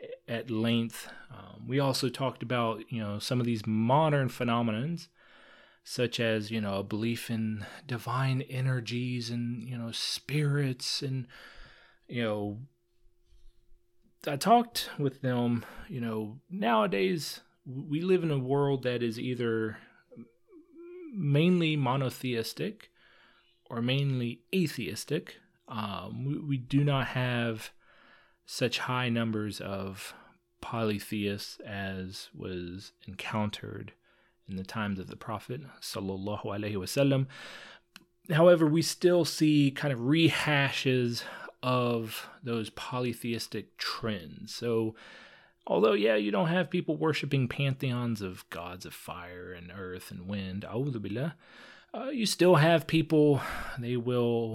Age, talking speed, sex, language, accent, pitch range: 30-49, 120 wpm, male, English, American, 110-145 Hz